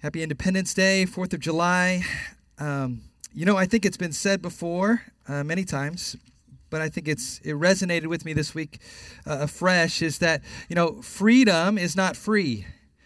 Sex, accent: male, American